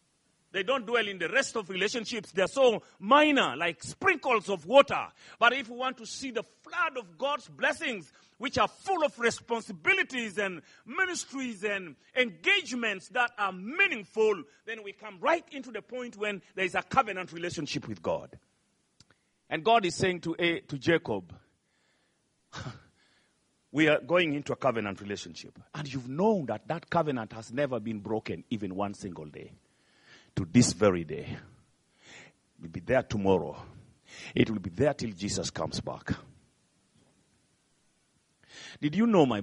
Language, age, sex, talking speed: English, 40-59, male, 155 wpm